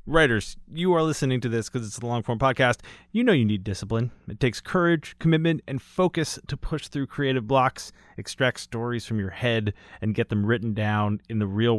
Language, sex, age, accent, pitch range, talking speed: English, male, 30-49, American, 100-140 Hz, 205 wpm